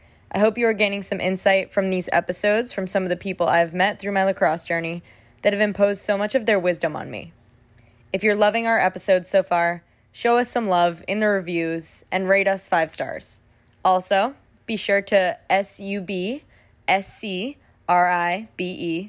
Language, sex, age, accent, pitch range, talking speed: English, female, 20-39, American, 170-200 Hz, 175 wpm